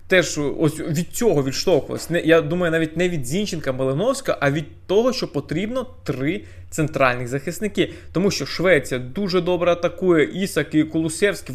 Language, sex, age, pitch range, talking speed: Ukrainian, male, 20-39, 140-185 Hz, 150 wpm